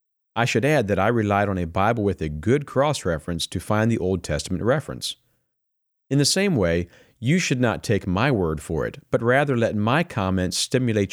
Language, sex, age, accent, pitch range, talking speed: English, male, 50-69, American, 95-130 Hz, 200 wpm